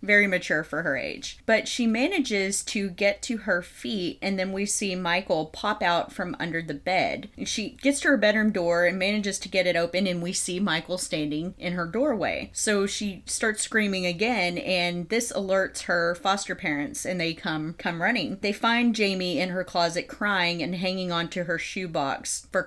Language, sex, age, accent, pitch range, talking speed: English, female, 30-49, American, 175-215 Hz, 195 wpm